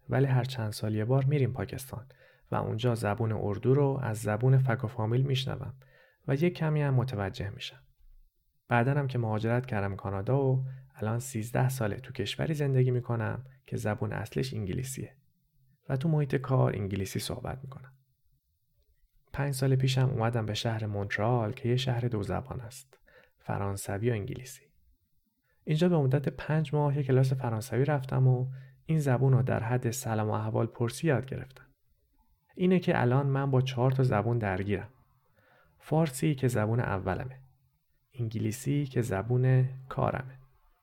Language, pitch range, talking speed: Persian, 110-135 Hz, 150 wpm